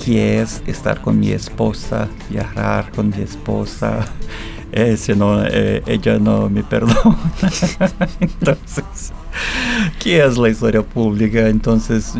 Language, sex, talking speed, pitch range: Spanish, male, 125 wpm, 105-125 Hz